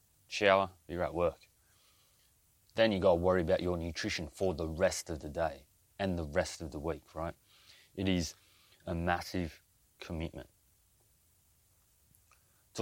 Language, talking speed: English, 140 wpm